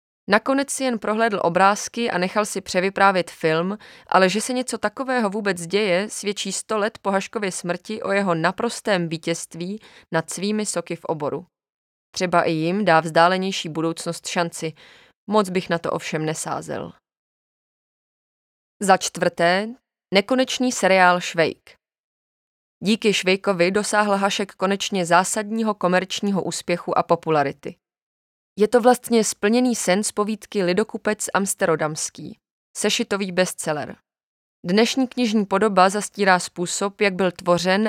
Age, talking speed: 20-39, 125 wpm